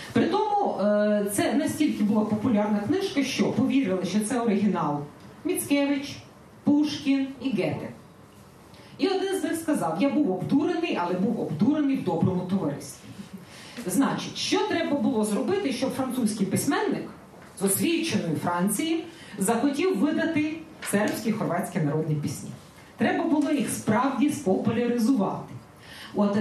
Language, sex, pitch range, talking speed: Ukrainian, female, 195-290 Hz, 120 wpm